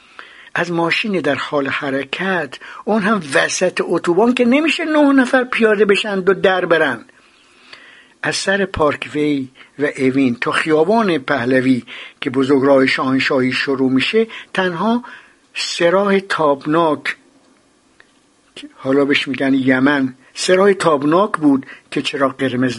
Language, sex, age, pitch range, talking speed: Persian, male, 60-79, 140-210 Hz, 120 wpm